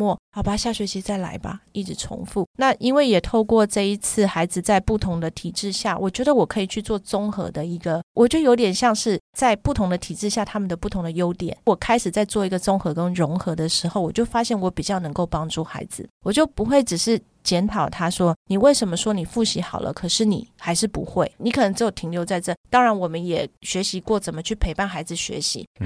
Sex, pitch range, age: female, 175-225 Hz, 30-49